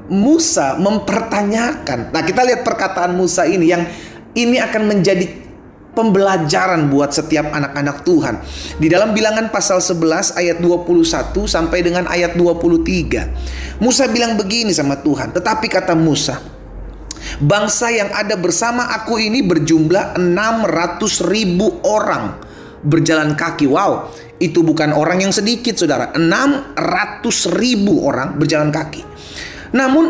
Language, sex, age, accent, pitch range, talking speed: Indonesian, male, 30-49, native, 170-240 Hz, 120 wpm